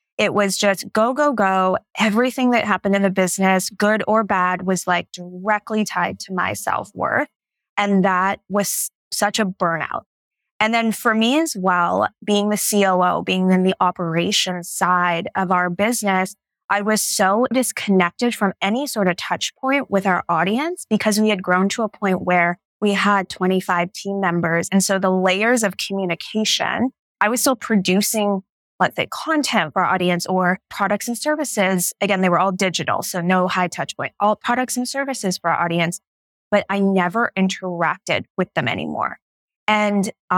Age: 20-39